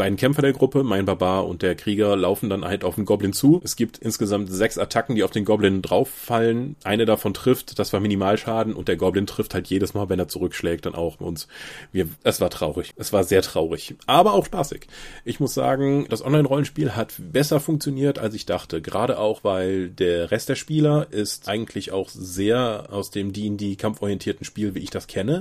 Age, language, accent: 30-49, German, German